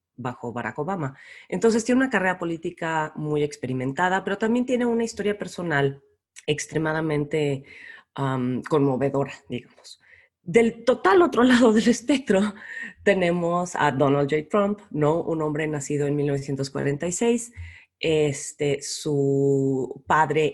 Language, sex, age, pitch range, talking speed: Spanish, female, 30-49, 140-205 Hz, 110 wpm